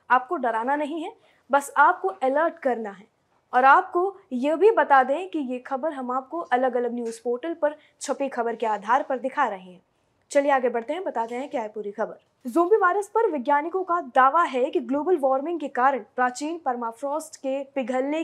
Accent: native